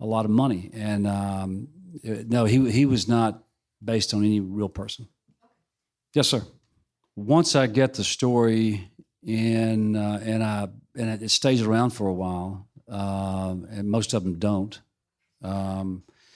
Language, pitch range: English, 105-125 Hz